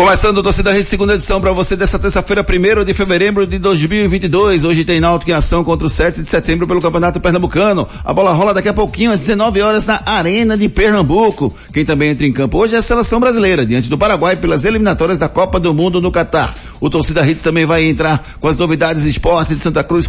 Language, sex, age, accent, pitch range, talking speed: Portuguese, male, 60-79, Brazilian, 165-200 Hz, 225 wpm